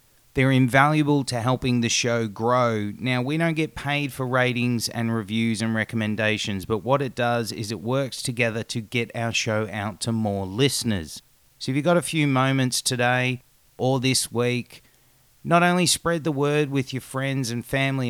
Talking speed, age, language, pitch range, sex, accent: 180 wpm, 30-49, English, 115-140 Hz, male, Australian